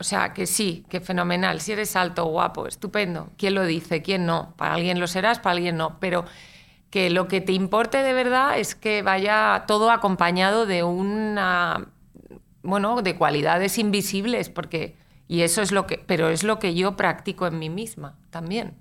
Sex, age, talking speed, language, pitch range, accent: female, 30-49, 185 wpm, Spanish, 165-205 Hz, Spanish